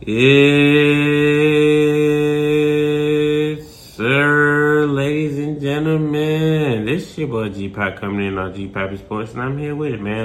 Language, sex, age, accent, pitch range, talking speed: English, male, 20-39, American, 105-145 Hz, 135 wpm